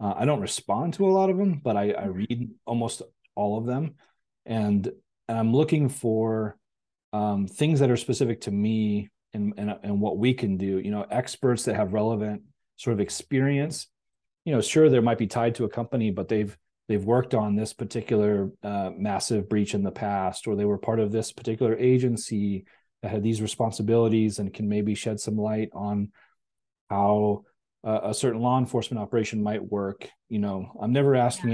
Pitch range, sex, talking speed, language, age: 105-120 Hz, male, 190 wpm, English, 30-49